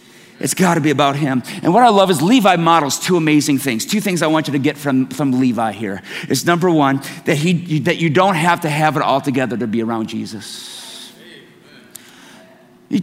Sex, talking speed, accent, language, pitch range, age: male, 210 wpm, American, English, 130-170 Hz, 50-69